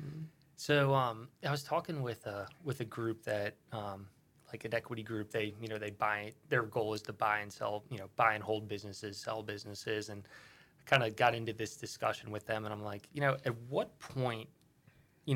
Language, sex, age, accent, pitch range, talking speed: English, male, 20-39, American, 110-135 Hz, 210 wpm